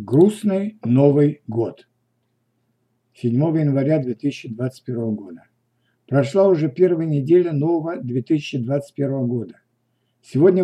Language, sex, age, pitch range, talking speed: Russian, male, 60-79, 130-175 Hz, 85 wpm